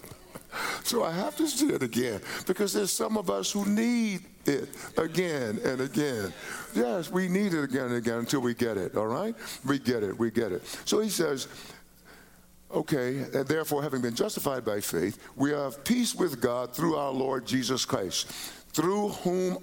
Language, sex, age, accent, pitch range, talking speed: English, male, 60-79, American, 115-180 Hz, 180 wpm